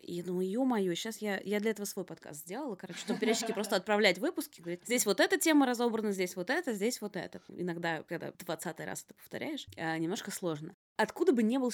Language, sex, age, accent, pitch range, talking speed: Russian, female, 20-39, native, 180-230 Hz, 220 wpm